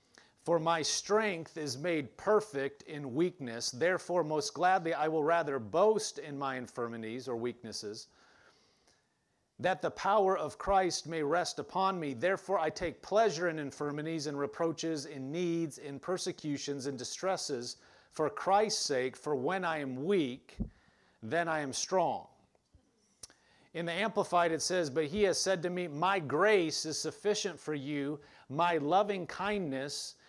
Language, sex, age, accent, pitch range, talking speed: English, male, 40-59, American, 140-185 Hz, 150 wpm